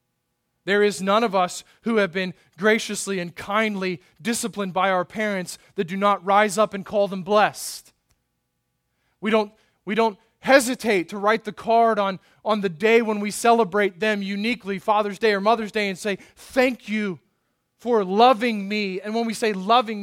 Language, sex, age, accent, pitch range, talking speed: English, male, 20-39, American, 190-225 Hz, 175 wpm